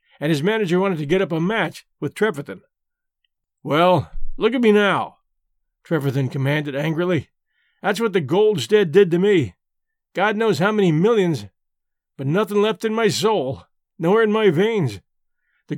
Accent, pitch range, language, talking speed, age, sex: American, 165-220 Hz, English, 160 wpm, 50-69, male